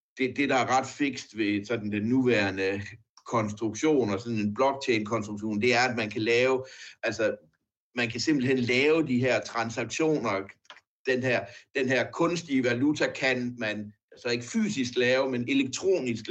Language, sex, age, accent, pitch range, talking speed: Danish, male, 60-79, native, 115-140 Hz, 160 wpm